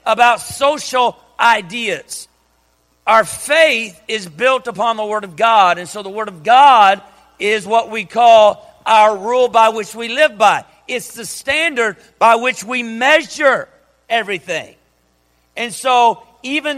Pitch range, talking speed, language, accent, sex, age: 190-250 Hz, 145 wpm, English, American, male, 50-69